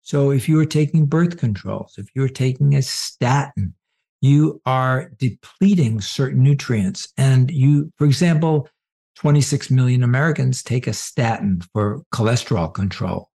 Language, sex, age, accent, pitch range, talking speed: English, male, 60-79, American, 110-155 Hz, 135 wpm